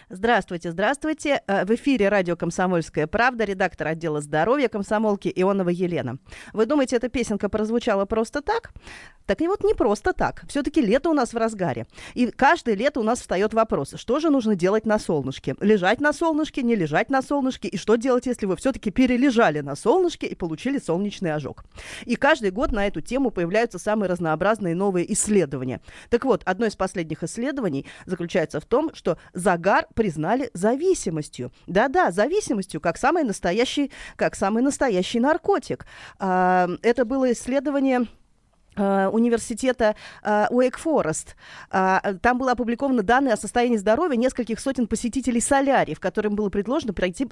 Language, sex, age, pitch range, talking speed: Russian, female, 20-39, 185-250 Hz, 155 wpm